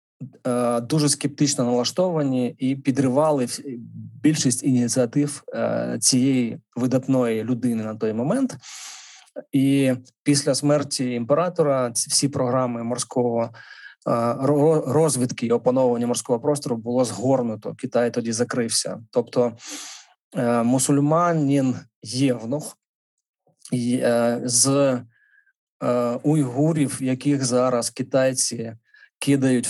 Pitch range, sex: 120-140 Hz, male